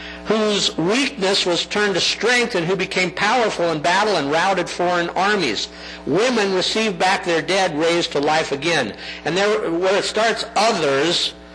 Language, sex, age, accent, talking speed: English, male, 60-79, American, 155 wpm